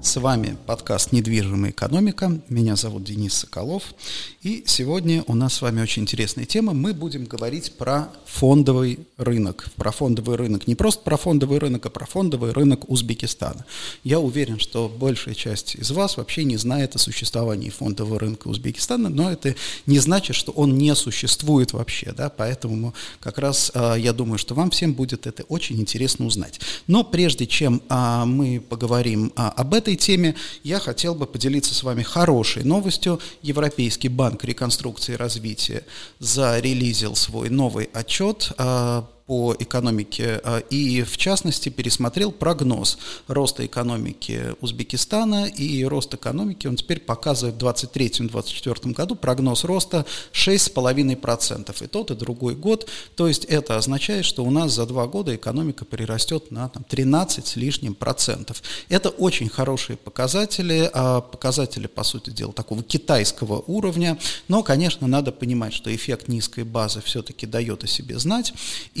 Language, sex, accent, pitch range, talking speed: Russian, male, native, 115-150 Hz, 145 wpm